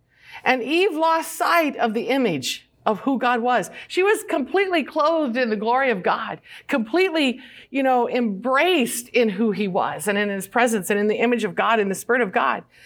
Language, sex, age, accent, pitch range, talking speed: English, female, 50-69, American, 215-270 Hz, 200 wpm